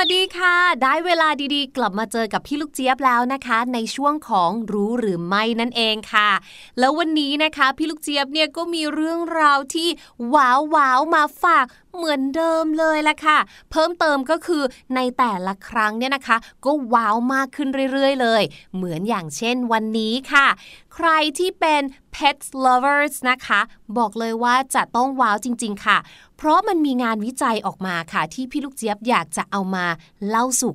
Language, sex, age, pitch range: Thai, female, 20-39, 225-305 Hz